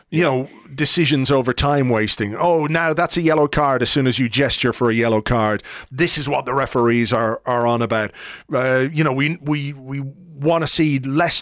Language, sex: English, male